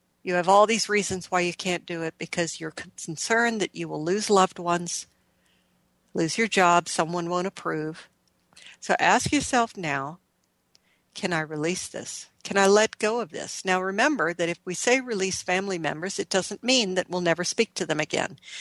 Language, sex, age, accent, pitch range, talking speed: English, female, 60-79, American, 170-220 Hz, 185 wpm